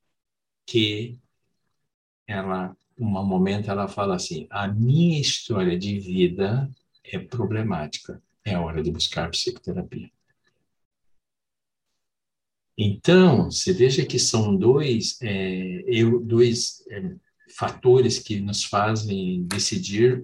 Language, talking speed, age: Portuguese, 105 wpm, 60-79